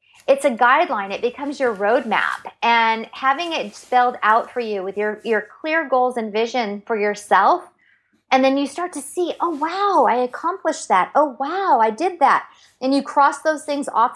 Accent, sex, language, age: American, female, English, 30-49